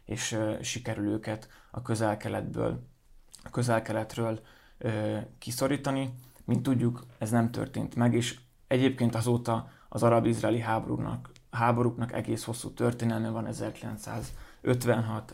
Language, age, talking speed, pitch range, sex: Hungarian, 20-39, 105 wpm, 110-120 Hz, male